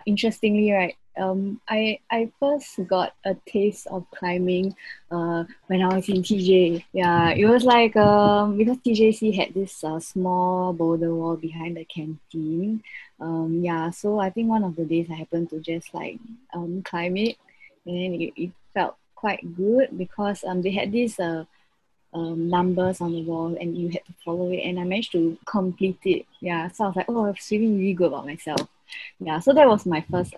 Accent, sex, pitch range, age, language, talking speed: Malaysian, female, 165-205 Hz, 20-39, English, 190 wpm